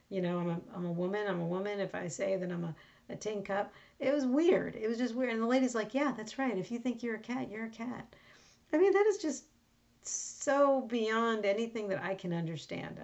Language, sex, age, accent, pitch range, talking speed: English, female, 50-69, American, 190-235 Hz, 250 wpm